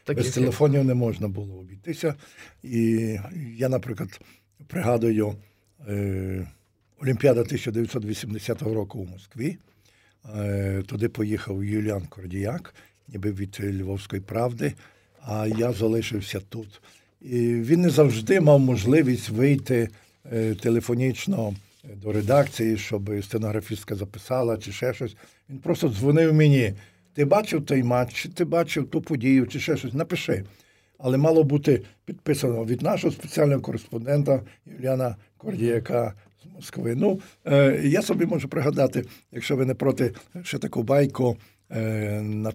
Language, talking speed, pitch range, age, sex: Ukrainian, 125 wpm, 105-140 Hz, 50-69, male